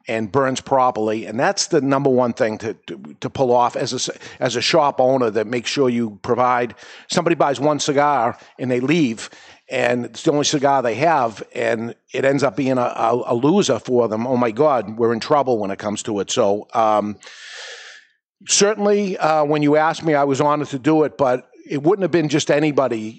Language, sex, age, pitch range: English, male, 50-69, 120-150 Hz